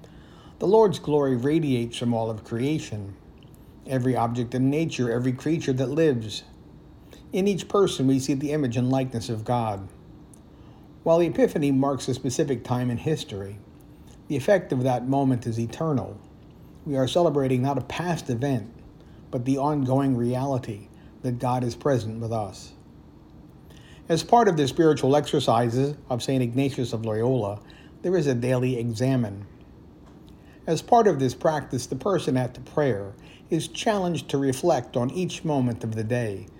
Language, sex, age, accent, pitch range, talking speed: English, male, 50-69, American, 115-145 Hz, 155 wpm